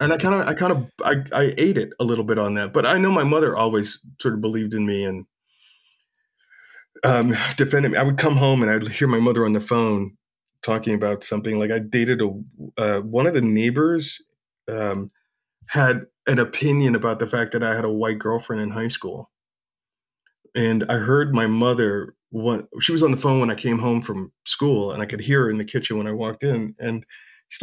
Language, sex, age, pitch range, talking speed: English, male, 20-39, 110-145 Hz, 220 wpm